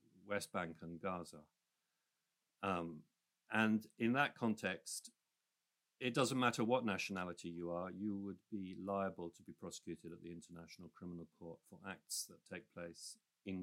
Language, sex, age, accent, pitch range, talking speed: English, male, 50-69, British, 90-115 Hz, 150 wpm